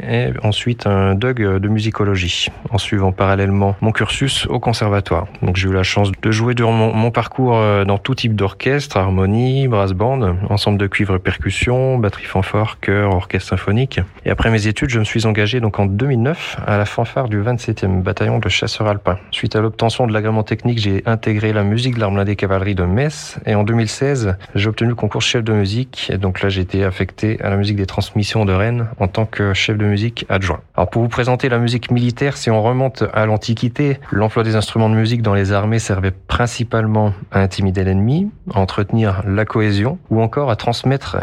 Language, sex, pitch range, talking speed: French, male, 100-115 Hz, 200 wpm